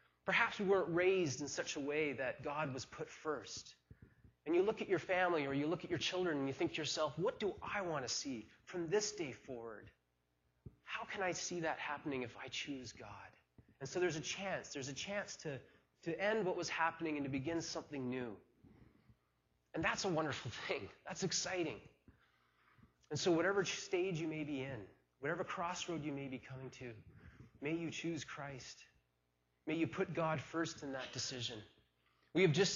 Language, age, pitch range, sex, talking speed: English, 30-49, 120-170 Hz, male, 195 wpm